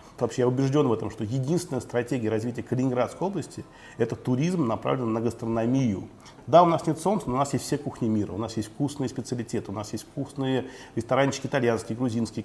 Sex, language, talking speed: male, Russian, 200 wpm